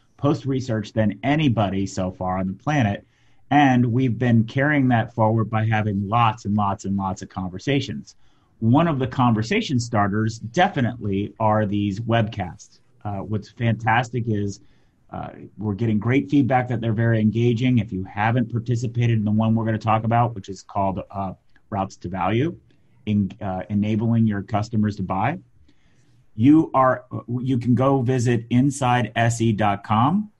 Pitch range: 105-125 Hz